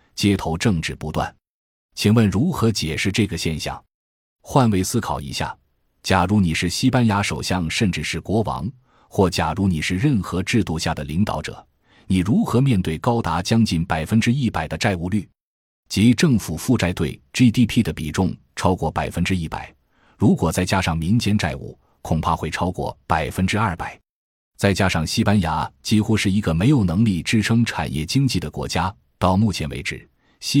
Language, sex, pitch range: Chinese, male, 80-110 Hz